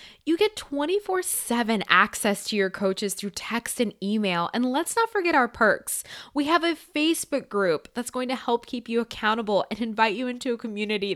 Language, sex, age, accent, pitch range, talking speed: English, female, 10-29, American, 205-280 Hz, 190 wpm